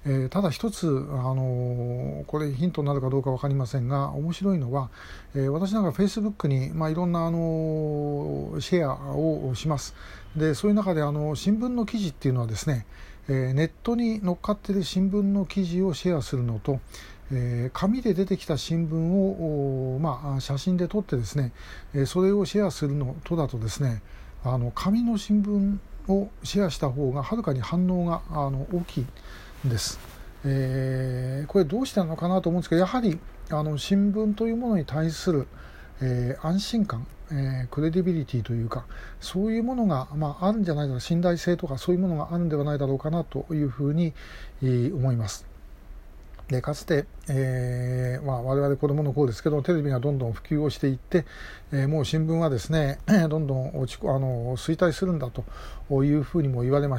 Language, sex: Japanese, male